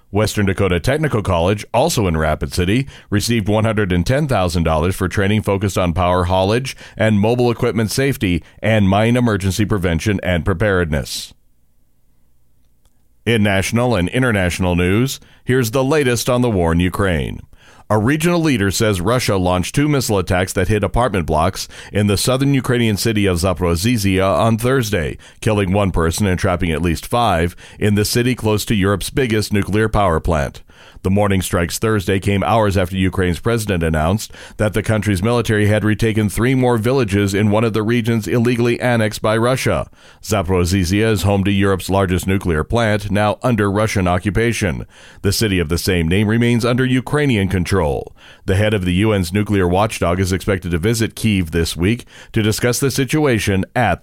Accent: American